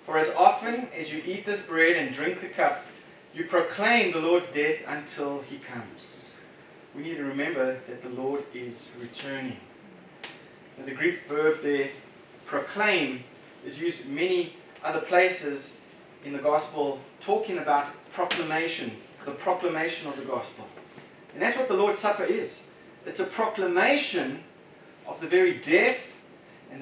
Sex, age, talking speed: male, 30-49, 150 wpm